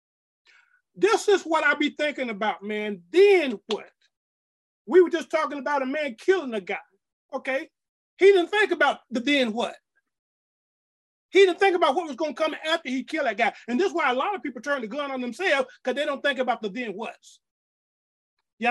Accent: American